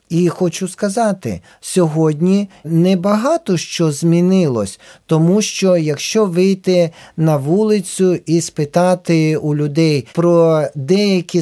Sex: male